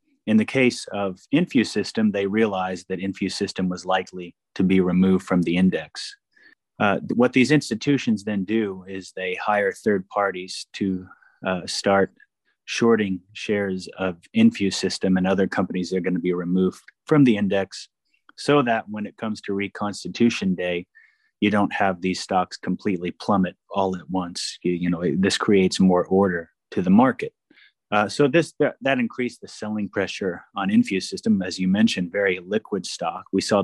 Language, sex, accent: English, male, American